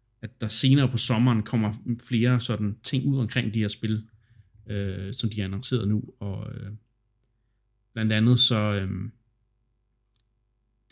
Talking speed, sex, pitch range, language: 145 wpm, male, 110-120 Hz, Danish